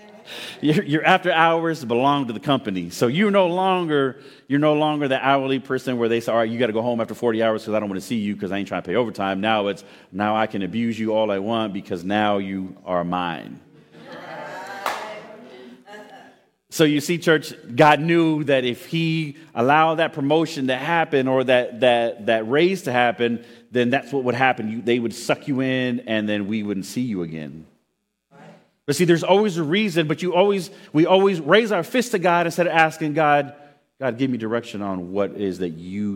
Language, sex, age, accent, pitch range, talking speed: English, male, 30-49, American, 110-160 Hz, 210 wpm